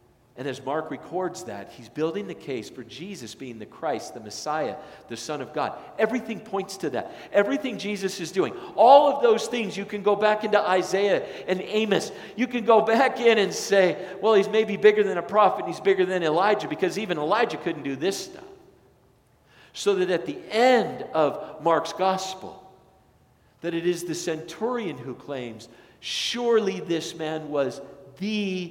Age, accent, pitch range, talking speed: 50-69, American, 150-215 Hz, 180 wpm